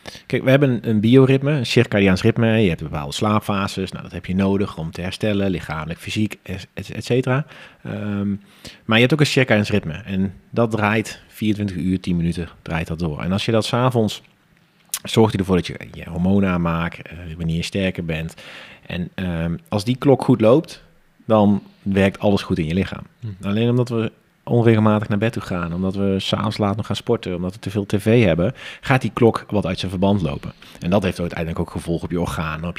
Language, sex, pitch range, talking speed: Dutch, male, 95-115 Hz, 205 wpm